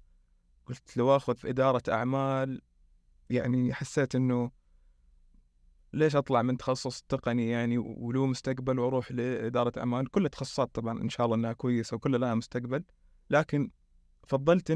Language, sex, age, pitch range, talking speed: Arabic, male, 20-39, 115-135 Hz, 135 wpm